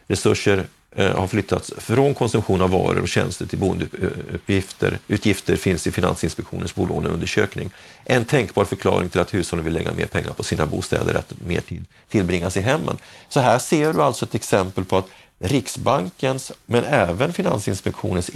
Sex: male